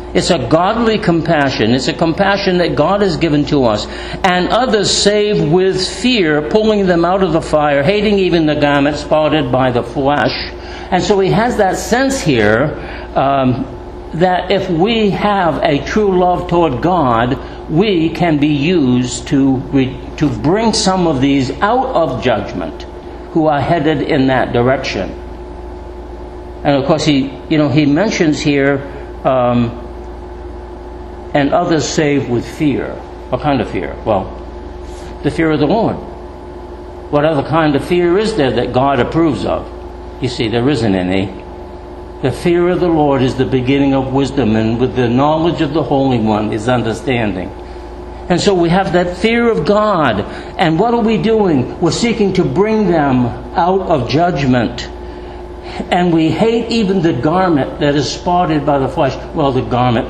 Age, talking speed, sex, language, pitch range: 60-79, 165 wpm, male, English, 125-180 Hz